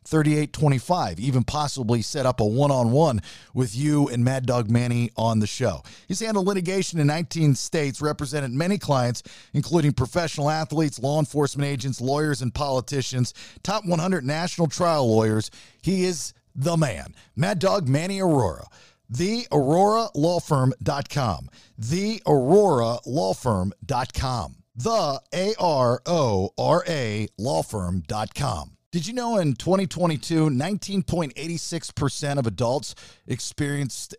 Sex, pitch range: male, 120-165 Hz